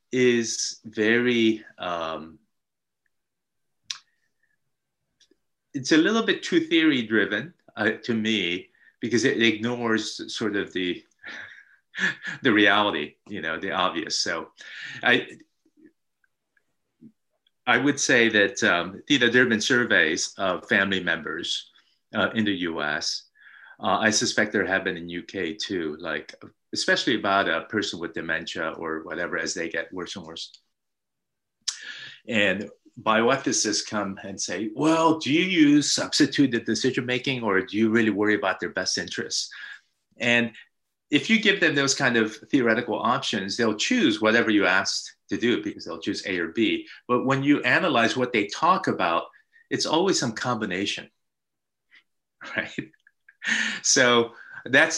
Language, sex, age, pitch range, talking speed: English, male, 30-49, 105-145 Hz, 140 wpm